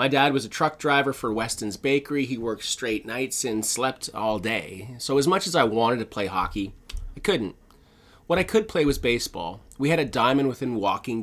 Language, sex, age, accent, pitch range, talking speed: English, male, 30-49, American, 105-135 Hz, 215 wpm